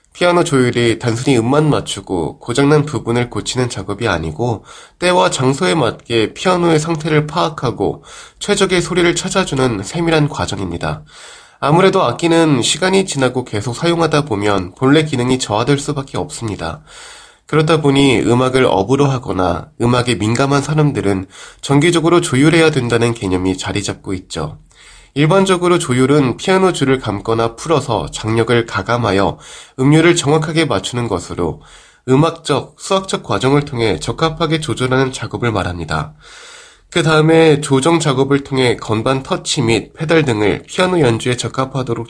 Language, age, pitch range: Korean, 20-39, 115-160 Hz